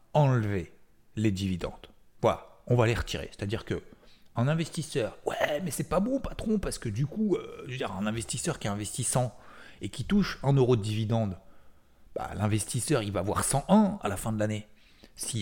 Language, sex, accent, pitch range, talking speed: French, male, French, 95-140 Hz, 195 wpm